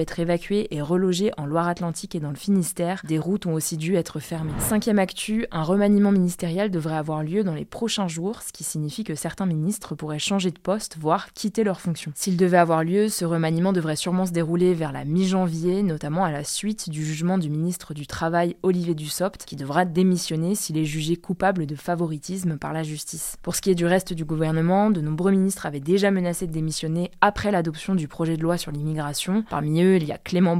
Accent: French